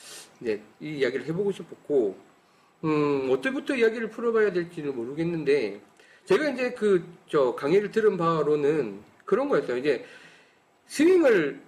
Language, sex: Korean, male